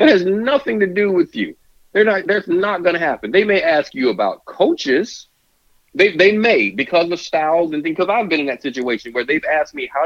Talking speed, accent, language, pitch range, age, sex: 225 wpm, American, English, 130-190 Hz, 40-59, male